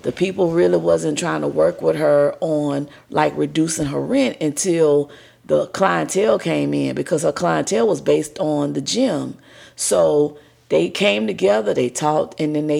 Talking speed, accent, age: 165 wpm, American, 40-59